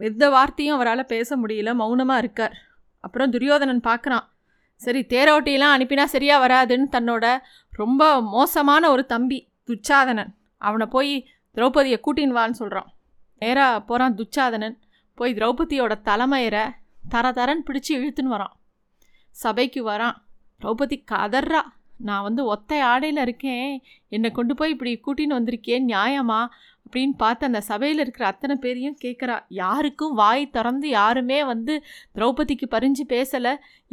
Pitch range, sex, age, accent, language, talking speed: 230-280 Hz, female, 20-39, native, Tamil, 120 wpm